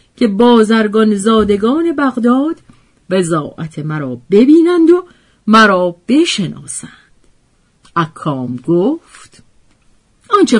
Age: 50-69